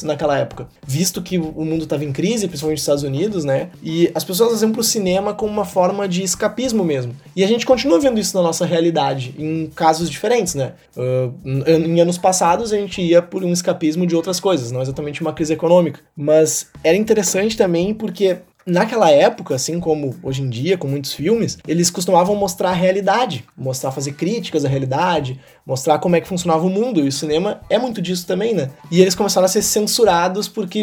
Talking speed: 200 wpm